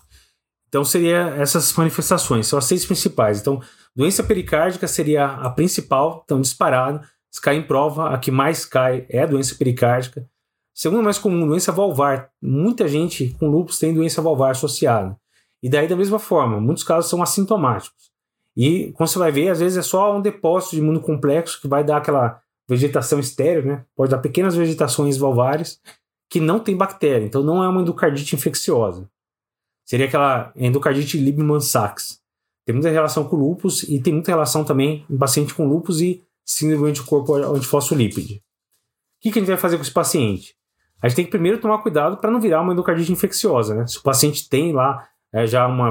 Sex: male